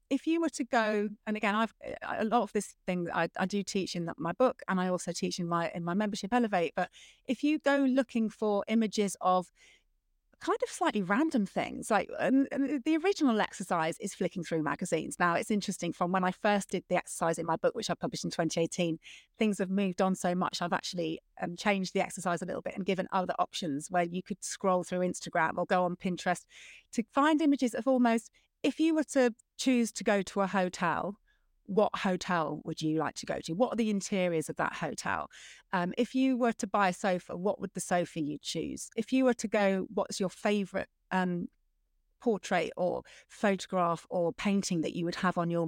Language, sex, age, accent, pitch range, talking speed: English, female, 30-49, British, 180-240 Hz, 215 wpm